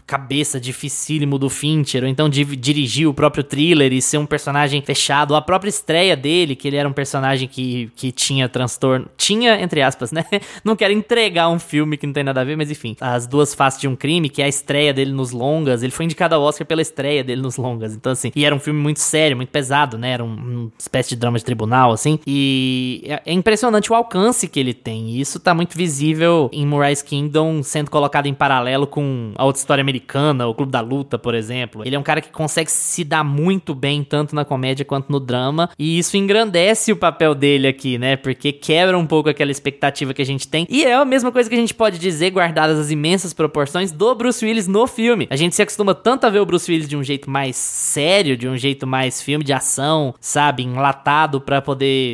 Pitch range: 135-170 Hz